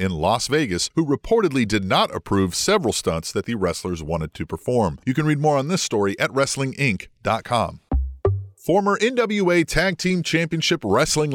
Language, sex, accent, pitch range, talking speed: English, male, American, 105-160 Hz, 165 wpm